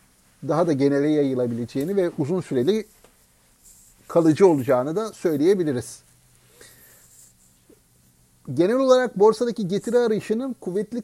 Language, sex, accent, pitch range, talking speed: Turkish, male, native, 150-205 Hz, 90 wpm